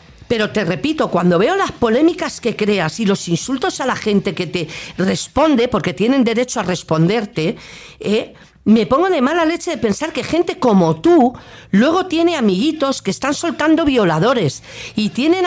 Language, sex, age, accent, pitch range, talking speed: Spanish, female, 50-69, Spanish, 195-310 Hz, 165 wpm